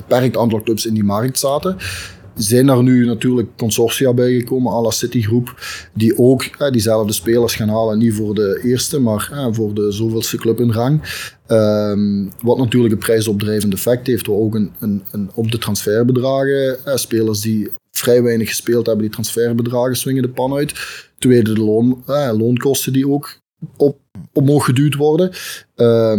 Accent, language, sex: Dutch, Dutch, male